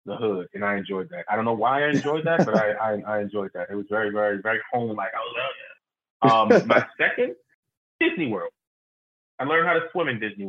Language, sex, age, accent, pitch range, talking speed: English, male, 20-39, American, 100-125 Hz, 235 wpm